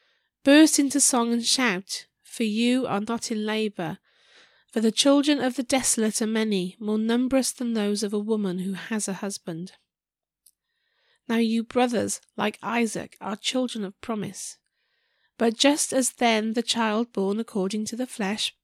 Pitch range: 205-250 Hz